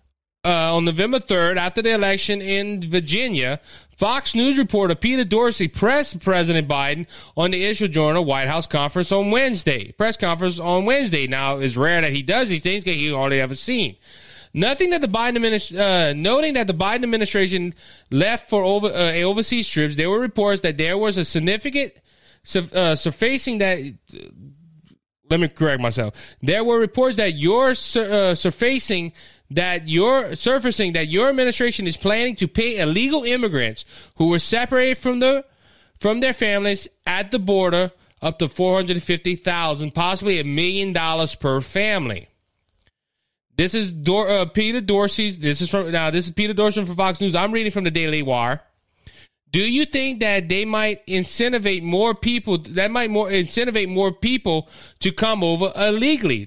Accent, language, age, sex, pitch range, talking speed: American, English, 30-49, male, 165-220 Hz, 170 wpm